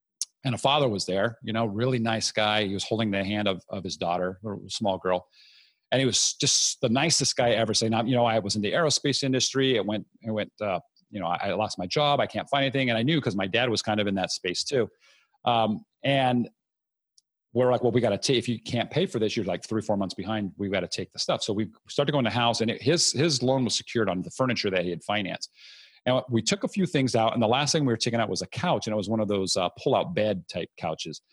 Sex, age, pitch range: male, 40-59, 105-130 Hz